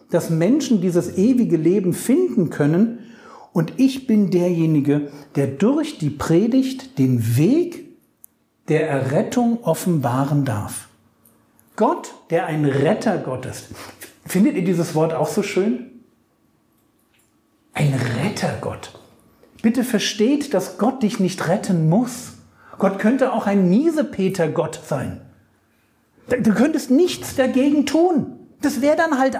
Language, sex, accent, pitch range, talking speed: German, male, German, 165-250 Hz, 120 wpm